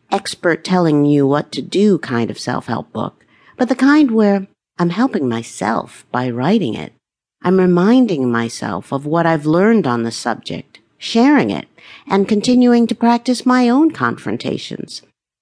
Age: 50-69